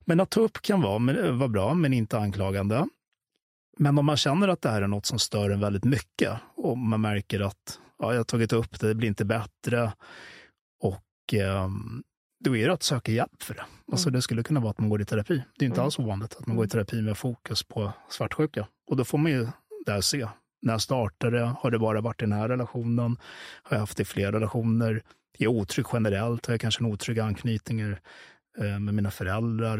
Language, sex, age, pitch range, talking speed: English, male, 30-49, 105-125 Hz, 220 wpm